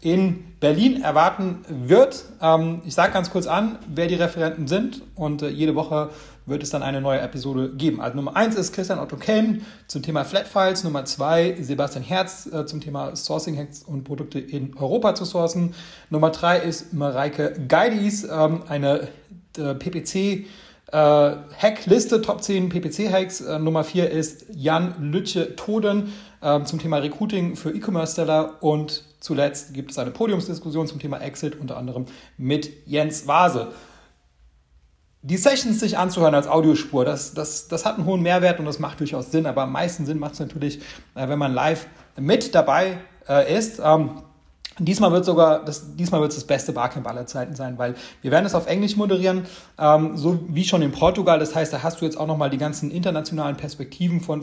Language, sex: German, male